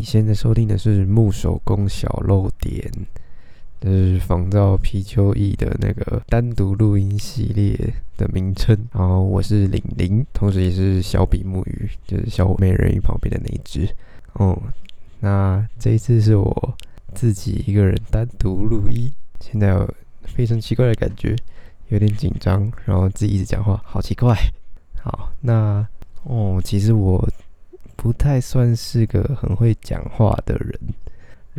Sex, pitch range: male, 95-110 Hz